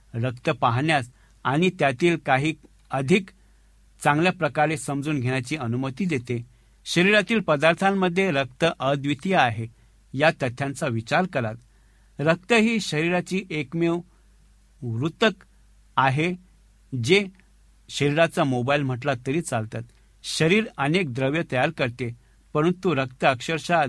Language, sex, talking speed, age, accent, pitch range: Marathi, male, 90 wpm, 60-79, native, 120-170 Hz